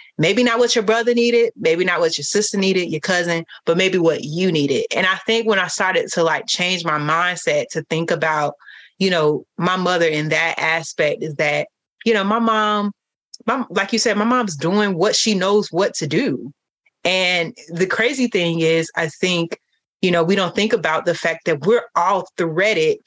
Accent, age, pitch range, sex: American, 30-49, 165-225 Hz, female